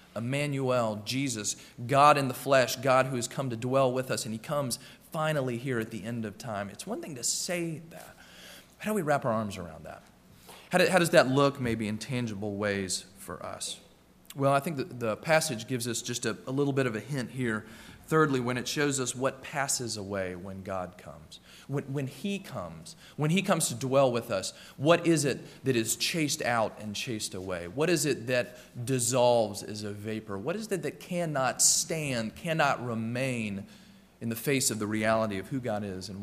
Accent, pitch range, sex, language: American, 115-150 Hz, male, English